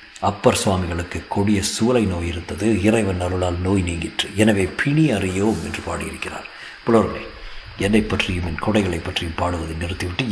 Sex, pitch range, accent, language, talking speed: male, 90-110 Hz, native, Tamil, 135 wpm